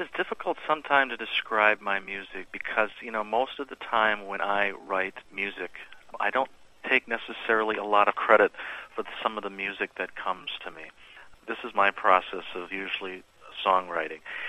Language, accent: English, American